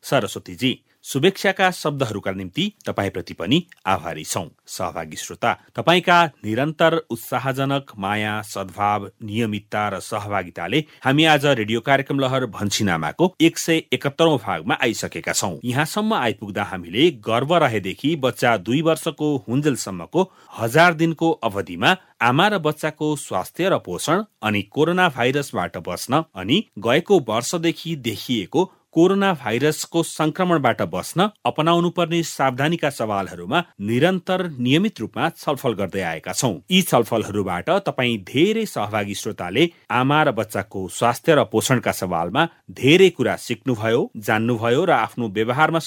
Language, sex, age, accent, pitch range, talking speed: English, male, 40-59, Indian, 105-165 Hz, 95 wpm